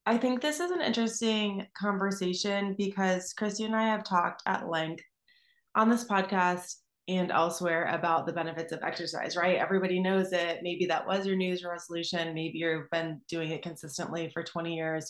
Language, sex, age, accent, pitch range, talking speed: English, female, 20-39, American, 160-190 Hz, 175 wpm